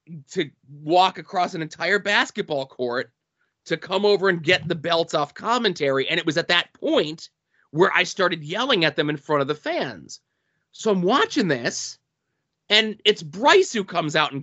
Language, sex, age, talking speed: English, male, 30-49, 185 wpm